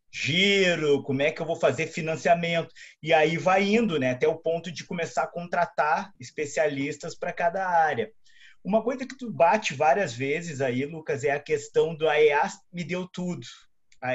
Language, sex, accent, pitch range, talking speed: Portuguese, male, Brazilian, 140-190 Hz, 180 wpm